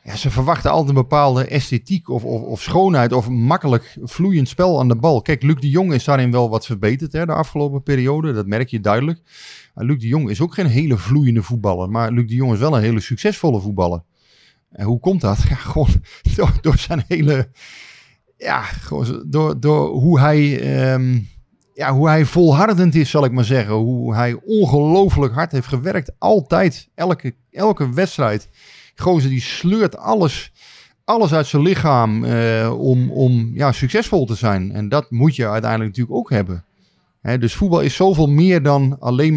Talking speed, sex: 185 wpm, male